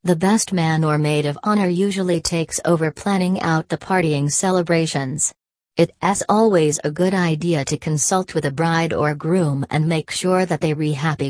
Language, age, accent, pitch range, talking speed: English, 40-59, American, 150-175 Hz, 180 wpm